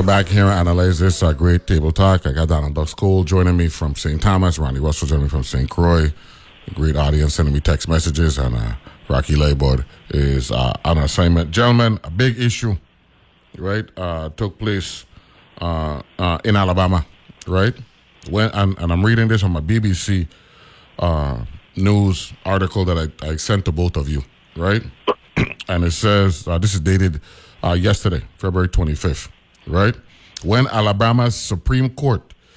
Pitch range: 85-115 Hz